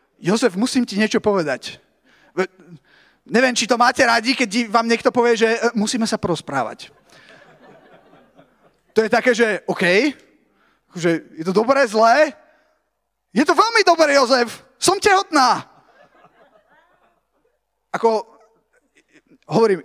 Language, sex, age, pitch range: Slovak, male, 30-49, 220-270 Hz